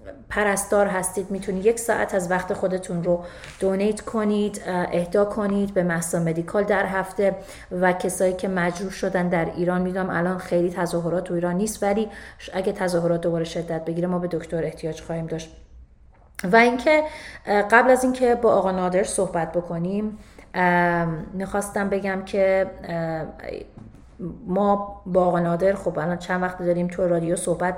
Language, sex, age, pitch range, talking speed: Persian, female, 30-49, 175-205 Hz, 145 wpm